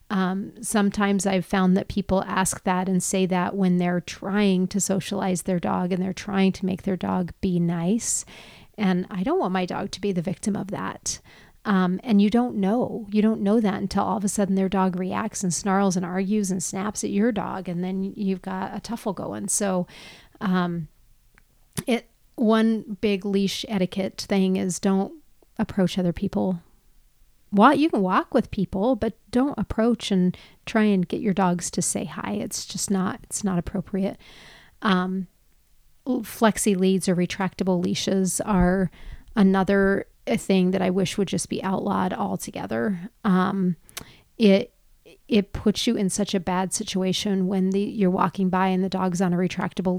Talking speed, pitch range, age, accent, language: 175 wpm, 185-205 Hz, 40-59, American, English